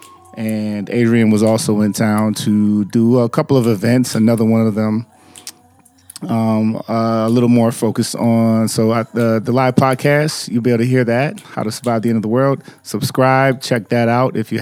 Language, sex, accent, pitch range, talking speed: English, male, American, 110-130 Hz, 200 wpm